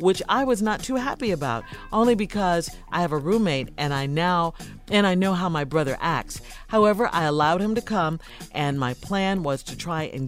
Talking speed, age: 210 wpm, 50-69